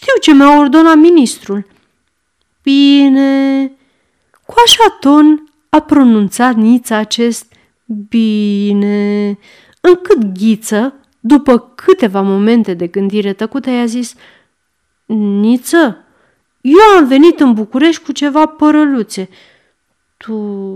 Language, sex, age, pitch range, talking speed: Romanian, female, 40-59, 215-315 Hz, 95 wpm